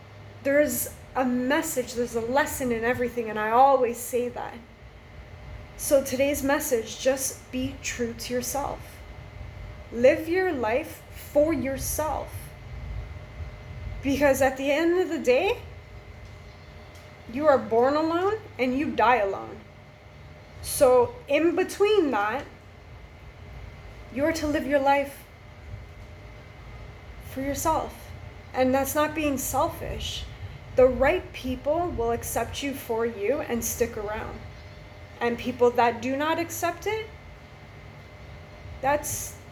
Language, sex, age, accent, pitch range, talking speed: English, female, 20-39, American, 235-295 Hz, 115 wpm